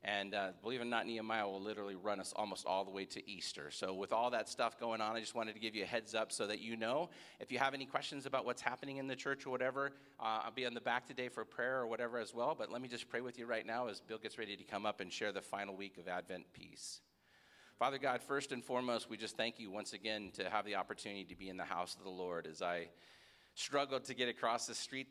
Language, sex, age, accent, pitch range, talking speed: English, male, 40-59, American, 105-125 Hz, 280 wpm